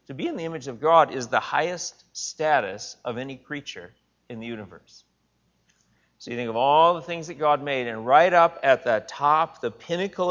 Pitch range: 110-165 Hz